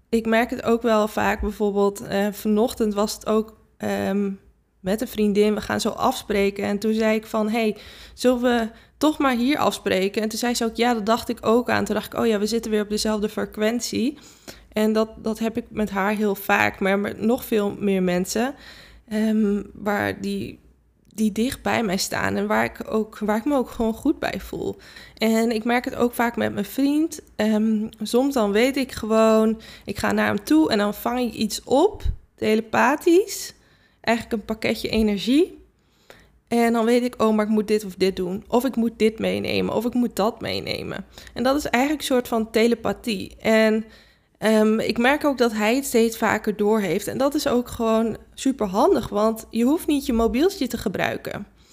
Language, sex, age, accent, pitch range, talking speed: Dutch, female, 20-39, Dutch, 210-240 Hz, 200 wpm